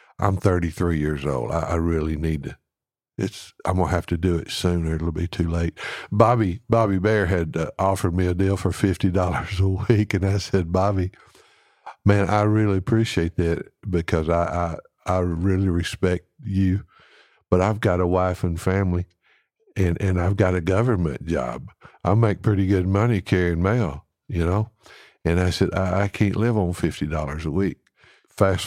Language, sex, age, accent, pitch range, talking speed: English, male, 60-79, American, 85-100 Hz, 180 wpm